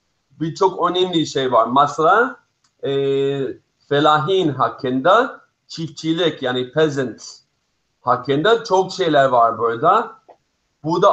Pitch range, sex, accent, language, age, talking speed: 140-185 Hz, male, native, Turkish, 50-69, 90 wpm